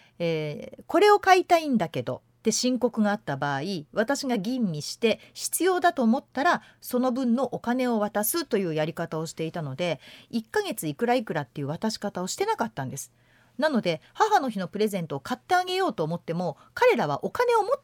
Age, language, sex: 40-59, Japanese, female